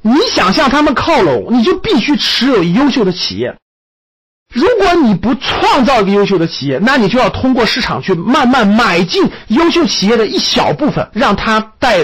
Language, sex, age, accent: Chinese, male, 50-69, native